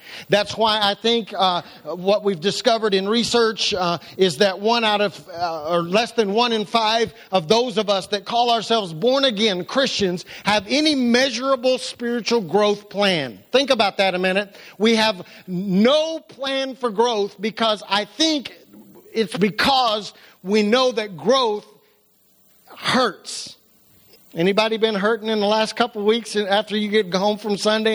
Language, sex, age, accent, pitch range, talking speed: English, male, 50-69, American, 205-240 Hz, 160 wpm